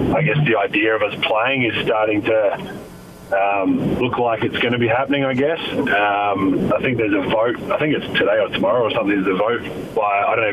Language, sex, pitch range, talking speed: English, male, 105-130 Hz, 220 wpm